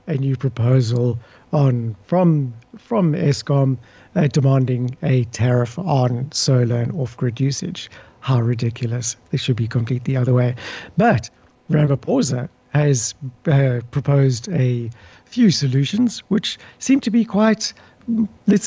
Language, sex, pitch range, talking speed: English, male, 125-160 Hz, 125 wpm